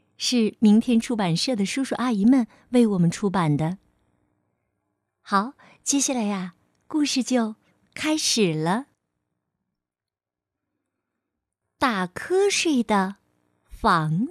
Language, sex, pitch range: Chinese, female, 150-245 Hz